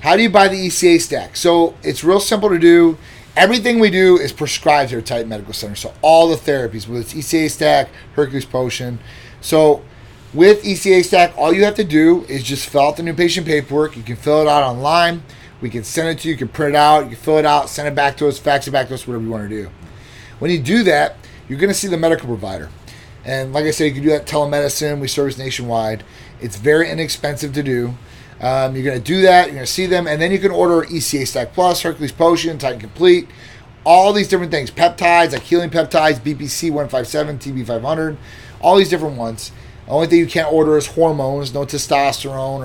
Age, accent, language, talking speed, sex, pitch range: 30-49, American, English, 225 wpm, male, 125-165 Hz